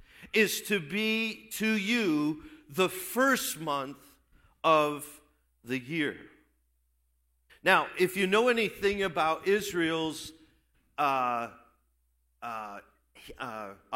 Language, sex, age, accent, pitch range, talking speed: English, male, 50-69, American, 130-205 Hz, 90 wpm